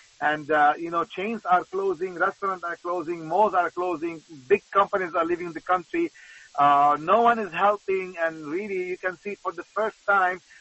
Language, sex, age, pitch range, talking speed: English, male, 40-59, 160-195 Hz, 185 wpm